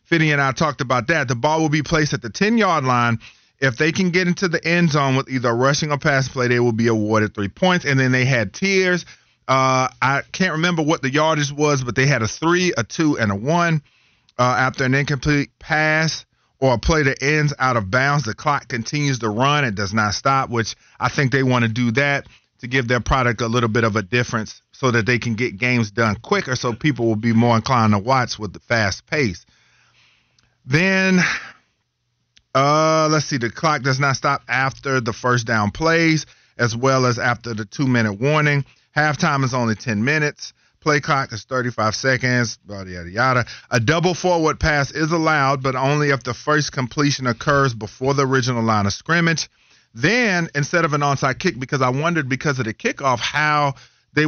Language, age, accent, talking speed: English, 40-59, American, 205 wpm